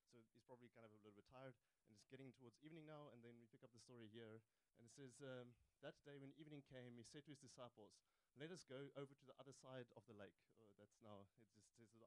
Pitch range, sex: 110-135 Hz, male